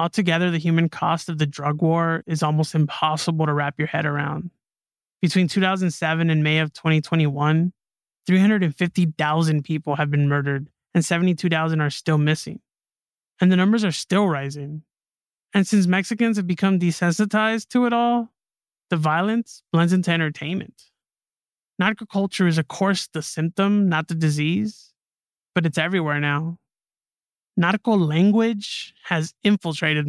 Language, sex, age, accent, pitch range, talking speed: English, male, 20-39, American, 155-200 Hz, 140 wpm